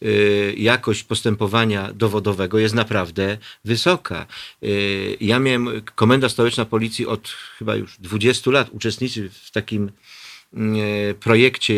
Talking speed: 100 wpm